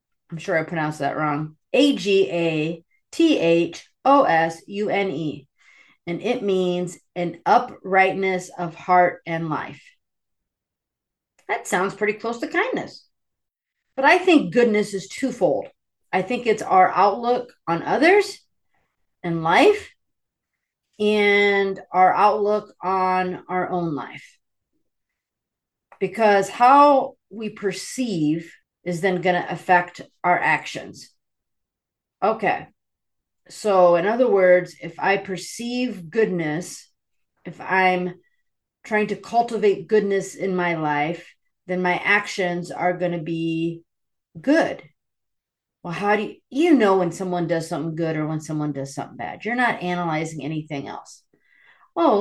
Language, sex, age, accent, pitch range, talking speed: English, female, 40-59, American, 170-210 Hz, 115 wpm